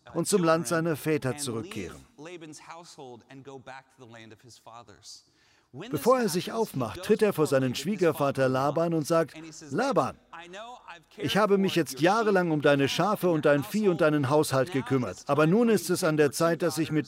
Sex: male